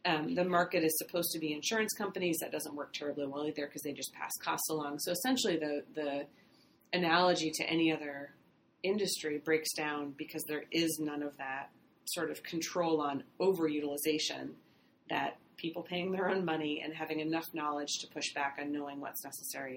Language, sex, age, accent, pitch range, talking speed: English, female, 30-49, American, 145-175 Hz, 180 wpm